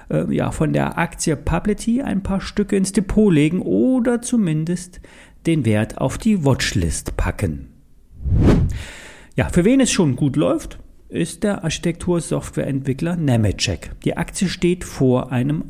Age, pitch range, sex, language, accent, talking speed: 40-59, 115-180 Hz, male, German, German, 135 wpm